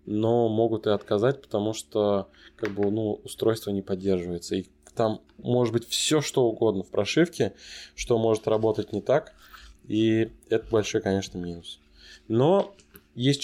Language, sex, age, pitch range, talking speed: Russian, male, 20-39, 100-125 Hz, 145 wpm